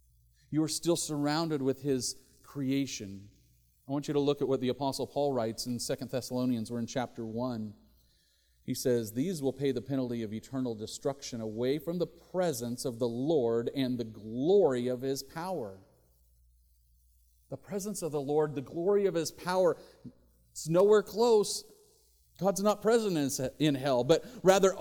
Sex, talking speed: male, 165 wpm